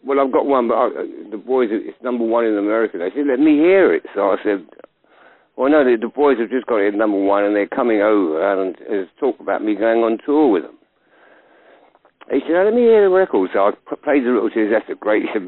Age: 60-79